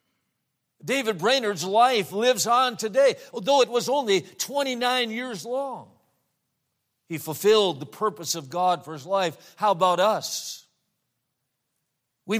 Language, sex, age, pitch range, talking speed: English, male, 50-69, 160-220 Hz, 125 wpm